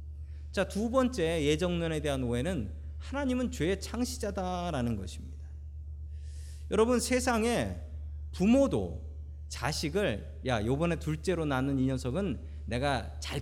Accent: native